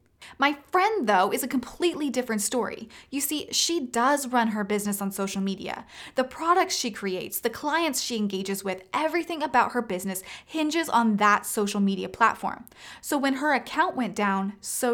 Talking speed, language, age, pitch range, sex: 175 wpm, English, 20-39, 205-285 Hz, female